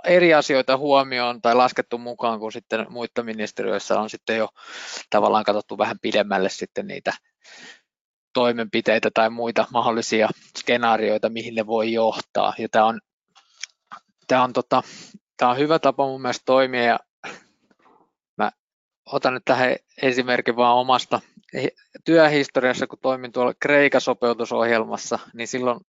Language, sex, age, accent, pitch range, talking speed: Finnish, male, 20-39, native, 110-125 Hz, 130 wpm